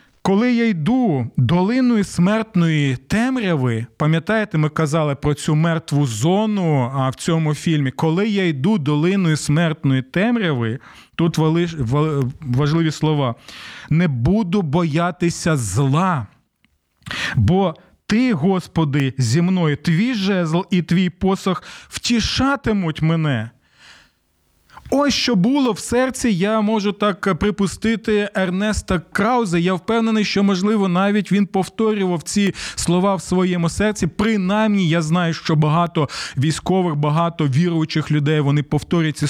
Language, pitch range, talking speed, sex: Ukrainian, 155-200 Hz, 120 wpm, male